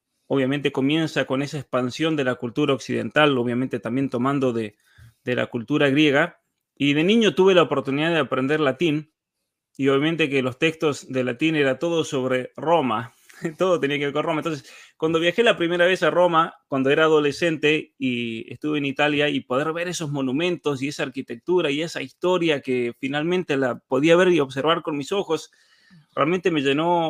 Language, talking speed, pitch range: Spanish, 180 wpm, 130-165 Hz